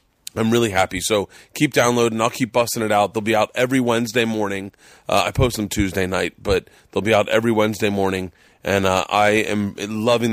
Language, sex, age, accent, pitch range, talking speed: English, male, 30-49, American, 105-125 Hz, 205 wpm